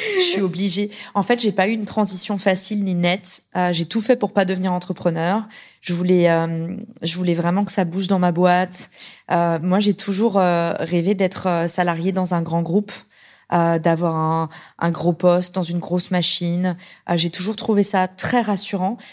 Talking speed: 195 wpm